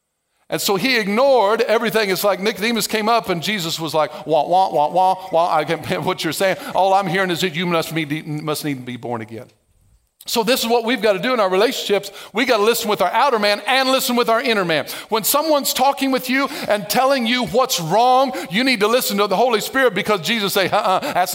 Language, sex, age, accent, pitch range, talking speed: English, male, 50-69, American, 190-245 Hz, 240 wpm